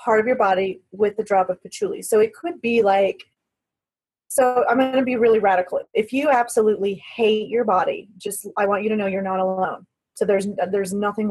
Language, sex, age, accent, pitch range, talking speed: English, female, 30-49, American, 190-230 Hz, 210 wpm